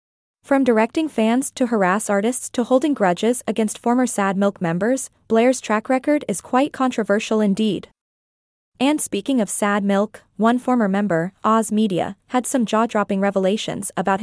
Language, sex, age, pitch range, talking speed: English, female, 20-39, 200-250 Hz, 150 wpm